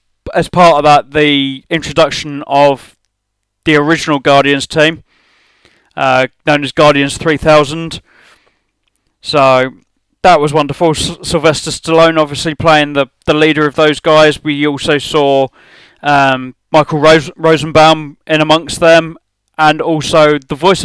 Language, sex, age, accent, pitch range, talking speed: English, male, 20-39, British, 135-160 Hz, 125 wpm